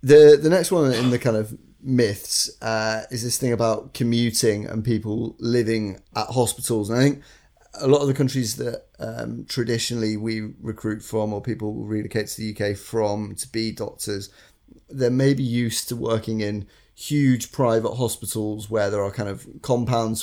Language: English